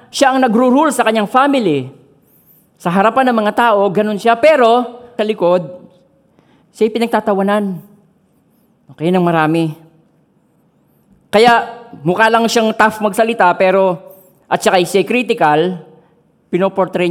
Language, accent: Filipino, native